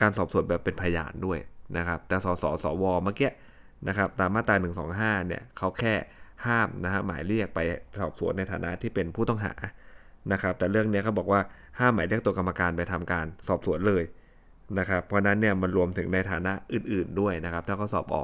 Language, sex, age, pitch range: Thai, male, 20-39, 90-105 Hz